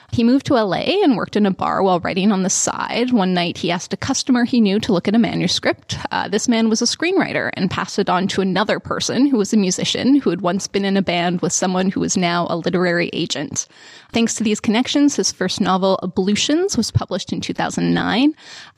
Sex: female